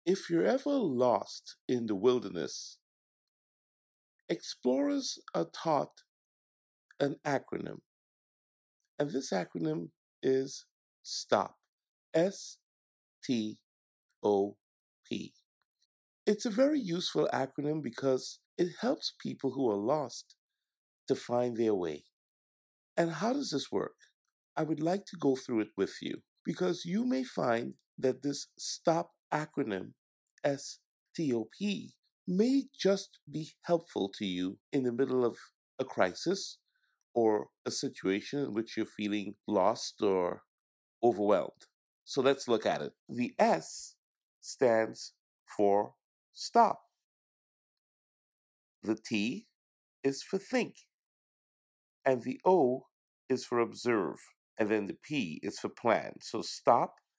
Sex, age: male, 50-69